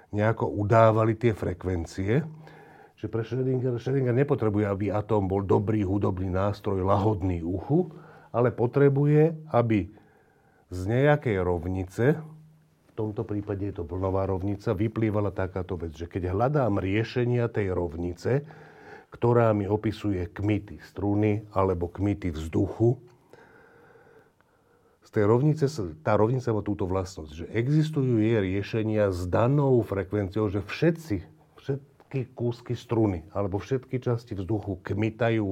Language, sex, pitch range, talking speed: Slovak, male, 100-125 Hz, 120 wpm